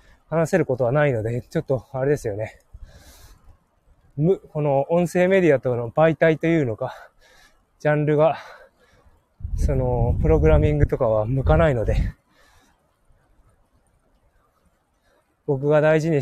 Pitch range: 95-150 Hz